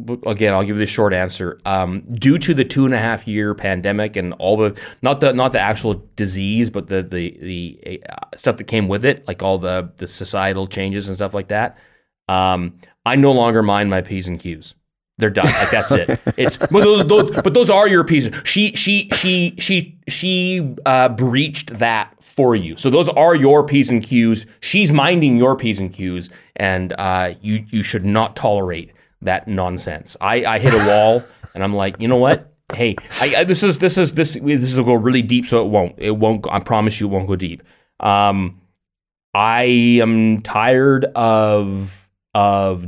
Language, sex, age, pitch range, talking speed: English, male, 20-39, 95-130 Hz, 200 wpm